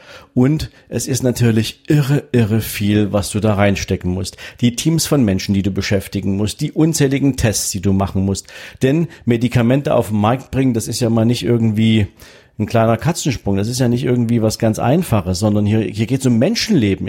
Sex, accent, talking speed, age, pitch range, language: male, German, 200 wpm, 50-69, 100-130 Hz, German